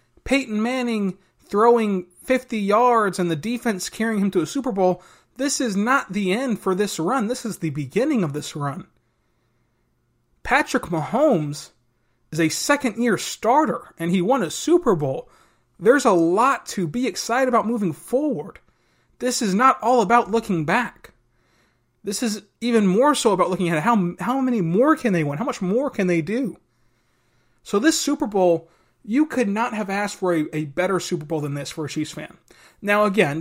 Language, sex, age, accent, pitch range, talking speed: English, male, 30-49, American, 170-230 Hz, 180 wpm